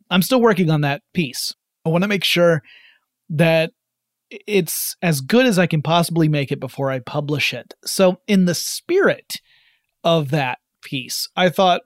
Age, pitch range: 30-49, 150-190 Hz